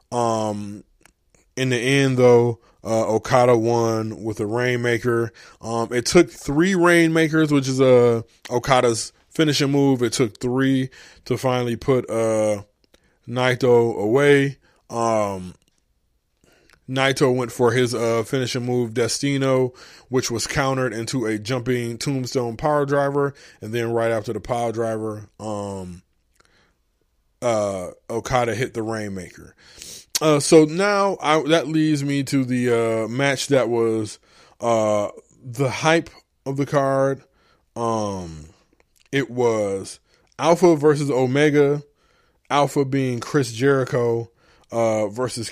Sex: male